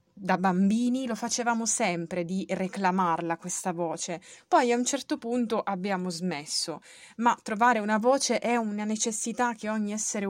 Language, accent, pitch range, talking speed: Italian, native, 185-240 Hz, 150 wpm